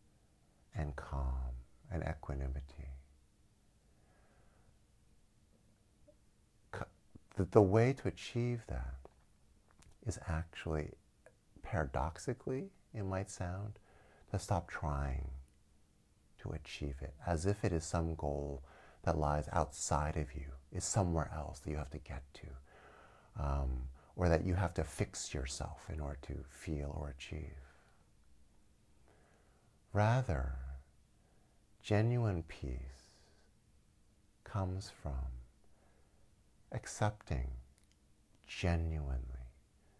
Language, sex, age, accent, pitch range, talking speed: English, male, 50-69, American, 70-95 Hz, 95 wpm